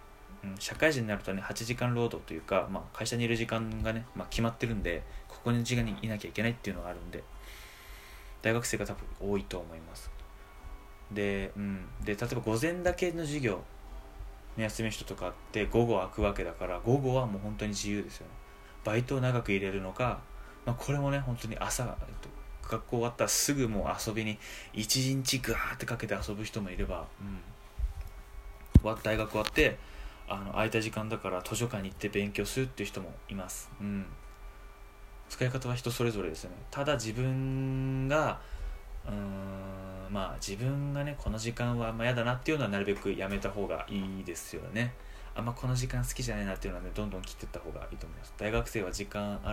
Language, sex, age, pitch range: Japanese, male, 20-39, 95-120 Hz